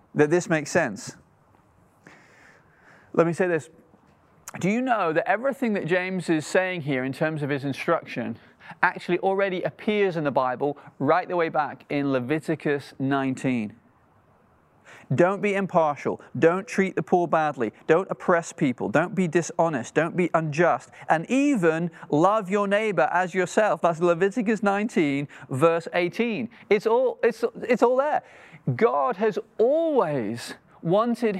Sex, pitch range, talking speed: male, 145-195 Hz, 140 wpm